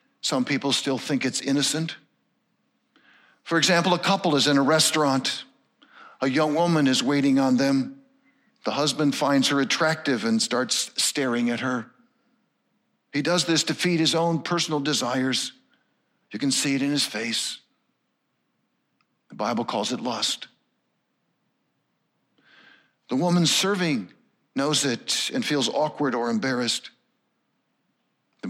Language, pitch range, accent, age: English, 130-180 Hz, American, 50-69